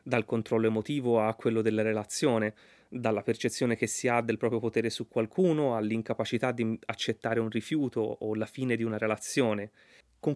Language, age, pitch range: Italian, 30-49, 115-145 Hz